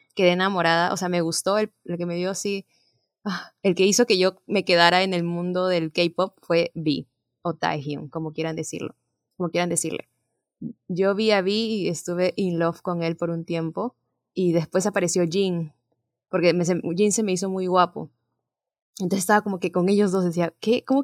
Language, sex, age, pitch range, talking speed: Spanish, female, 20-39, 180-215 Hz, 205 wpm